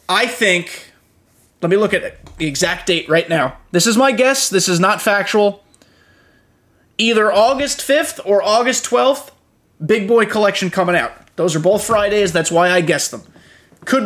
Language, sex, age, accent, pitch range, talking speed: English, male, 20-39, American, 180-230 Hz, 170 wpm